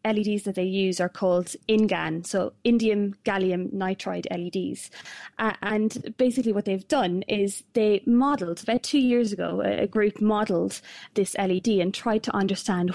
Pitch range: 190-235 Hz